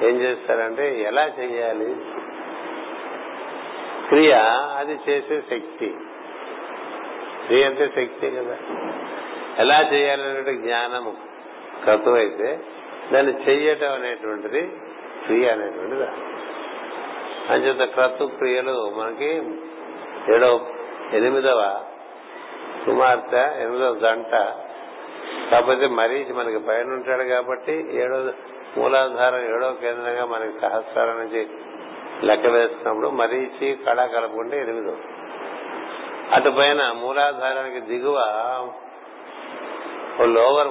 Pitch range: 115-145 Hz